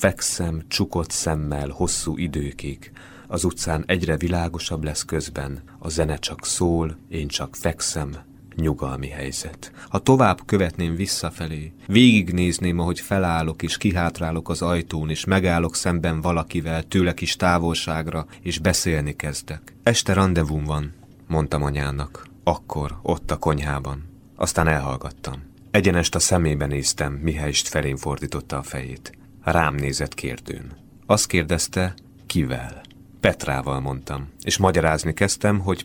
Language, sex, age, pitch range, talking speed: Hungarian, male, 30-49, 75-95 Hz, 125 wpm